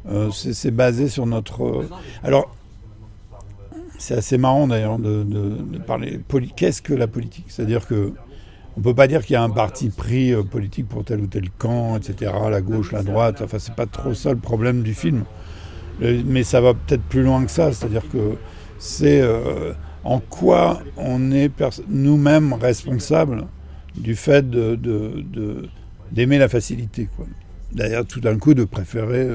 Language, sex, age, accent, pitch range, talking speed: French, male, 60-79, French, 105-130 Hz, 180 wpm